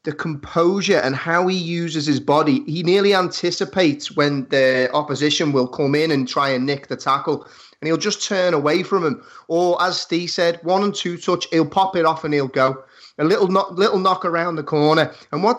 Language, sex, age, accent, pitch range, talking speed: English, male, 30-49, British, 135-175 Hz, 210 wpm